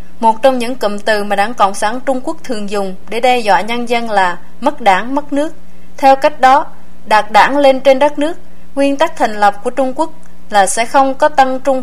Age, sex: 20-39, female